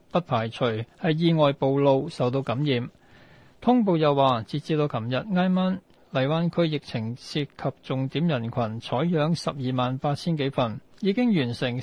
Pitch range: 130-170 Hz